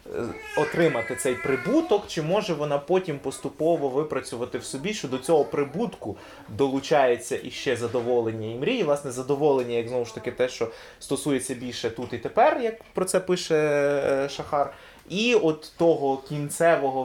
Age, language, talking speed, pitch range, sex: 20-39, Ukrainian, 150 wpm, 125-165 Hz, male